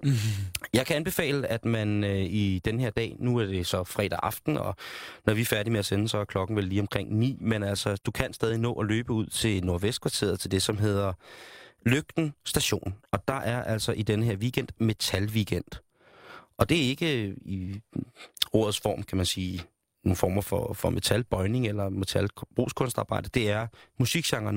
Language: Danish